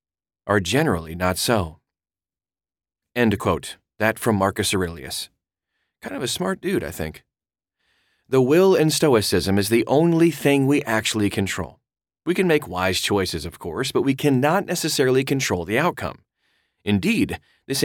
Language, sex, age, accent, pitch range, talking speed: English, male, 30-49, American, 95-130 Hz, 150 wpm